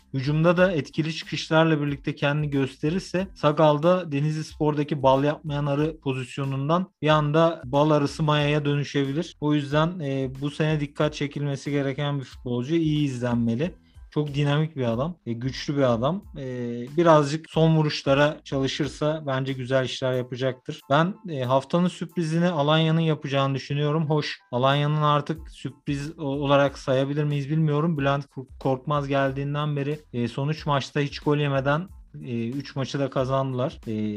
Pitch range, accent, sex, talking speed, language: 135-155 Hz, native, male, 140 wpm, Turkish